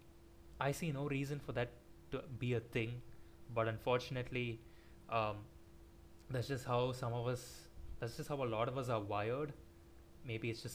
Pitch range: 110-140 Hz